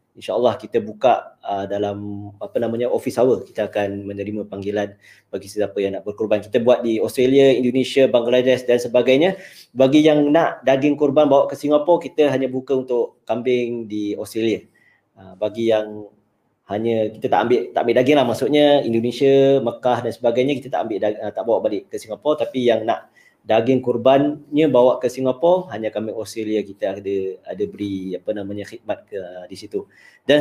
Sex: male